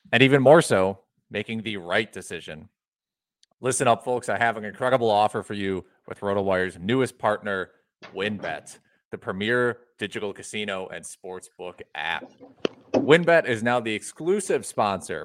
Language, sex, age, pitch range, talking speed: English, male, 30-49, 100-125 Hz, 140 wpm